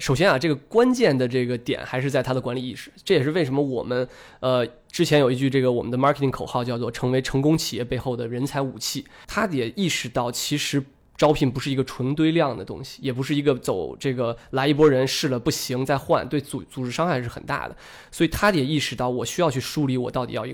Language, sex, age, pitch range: Chinese, male, 20-39, 125-145 Hz